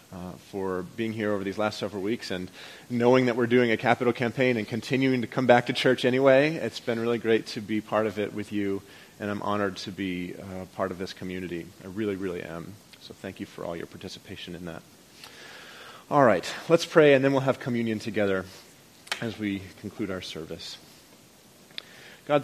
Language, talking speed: English, 200 wpm